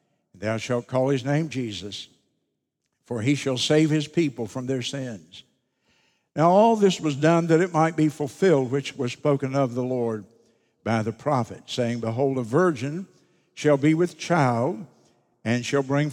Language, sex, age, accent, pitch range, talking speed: English, male, 60-79, American, 120-150 Hz, 165 wpm